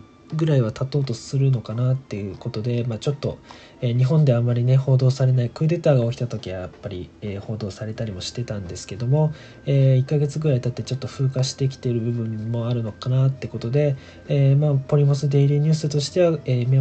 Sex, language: male, Japanese